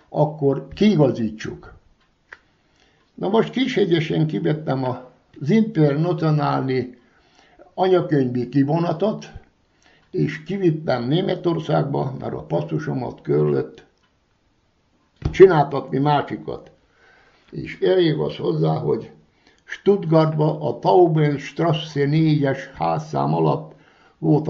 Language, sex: Hungarian, male